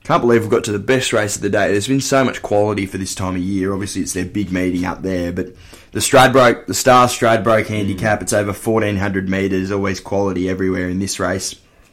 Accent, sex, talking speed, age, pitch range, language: Australian, male, 225 wpm, 20-39, 95-110 Hz, English